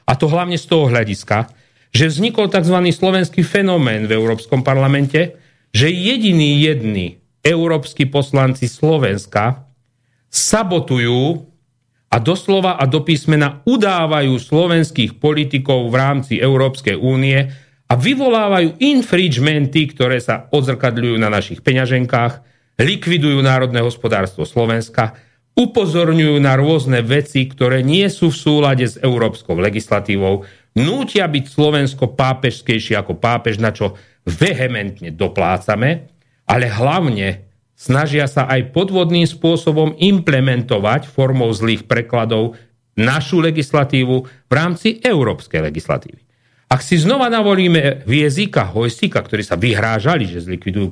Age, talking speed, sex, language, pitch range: 40-59, 115 wpm, male, Slovak, 115-155 Hz